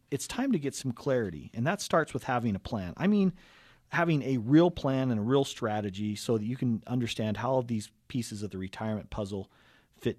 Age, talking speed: 40-59, 220 wpm